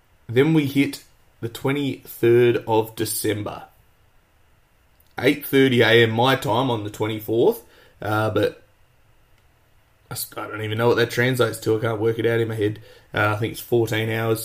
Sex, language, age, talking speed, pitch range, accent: male, English, 20-39, 155 wpm, 110-125 Hz, Australian